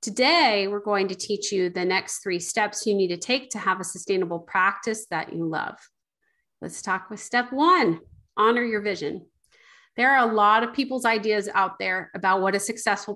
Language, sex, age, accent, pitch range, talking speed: English, female, 30-49, American, 195-230 Hz, 195 wpm